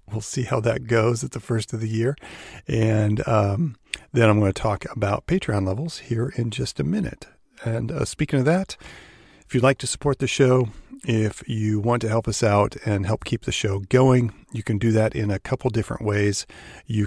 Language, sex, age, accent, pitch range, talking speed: English, male, 40-59, American, 105-125 Hz, 215 wpm